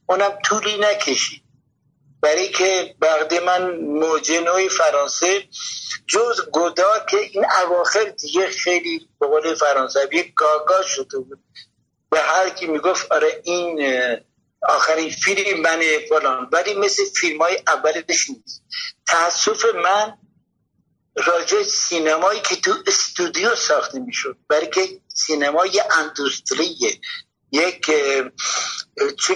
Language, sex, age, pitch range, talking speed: Persian, male, 60-79, 160-220 Hz, 105 wpm